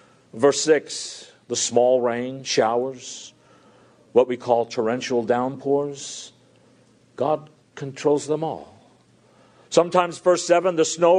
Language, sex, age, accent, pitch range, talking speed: English, male, 50-69, American, 145-220 Hz, 105 wpm